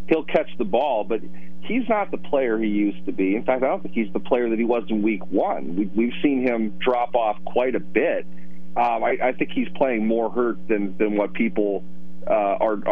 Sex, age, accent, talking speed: male, 40-59, American, 230 wpm